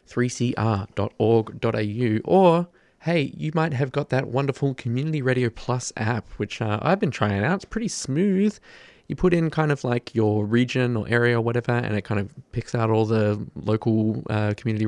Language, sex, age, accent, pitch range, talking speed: English, male, 20-39, Australian, 110-135 Hz, 180 wpm